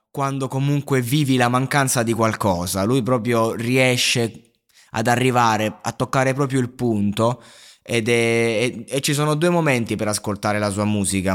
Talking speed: 150 wpm